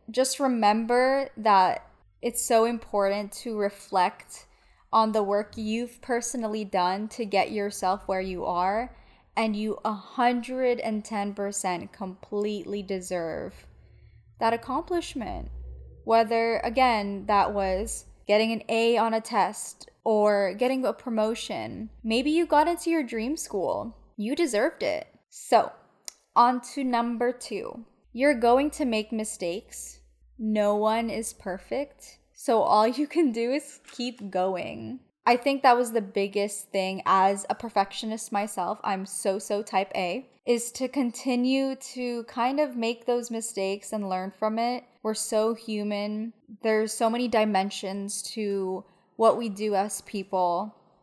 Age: 10-29